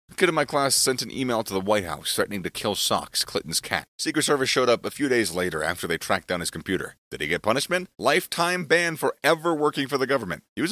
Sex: male